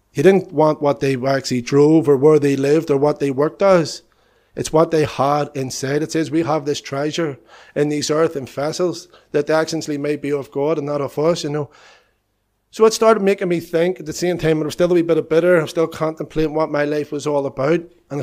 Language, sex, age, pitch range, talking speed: English, male, 30-49, 135-160 Hz, 235 wpm